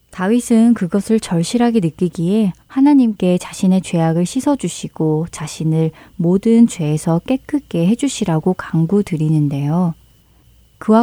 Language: Korean